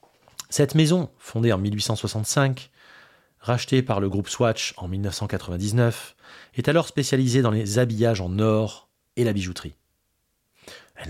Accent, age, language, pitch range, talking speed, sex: French, 30-49, French, 100-145 Hz, 130 wpm, male